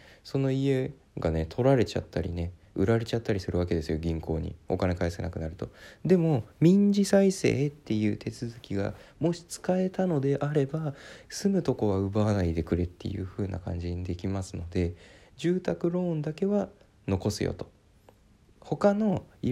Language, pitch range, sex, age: Japanese, 100-140 Hz, male, 20-39